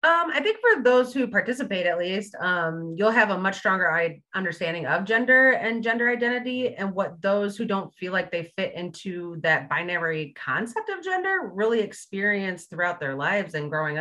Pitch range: 160-225 Hz